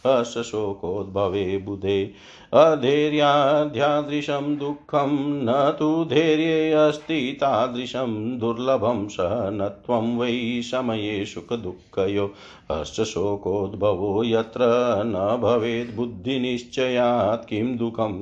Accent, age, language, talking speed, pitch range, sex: native, 50-69, Hindi, 70 wpm, 105-135 Hz, male